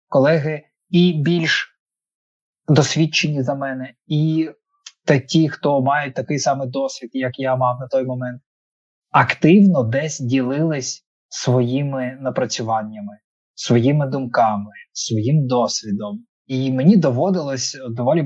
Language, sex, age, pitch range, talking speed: Ukrainian, male, 20-39, 130-170 Hz, 105 wpm